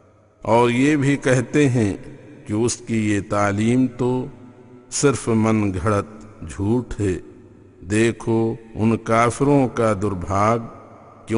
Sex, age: male, 50-69